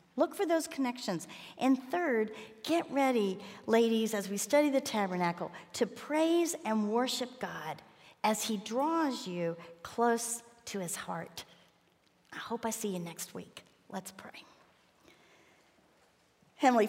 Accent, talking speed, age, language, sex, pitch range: American, 130 wpm, 50-69, English, female, 185-225 Hz